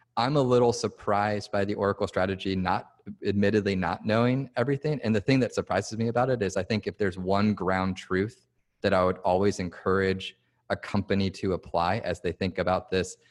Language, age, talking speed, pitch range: English, 30-49, 195 wpm, 90-110 Hz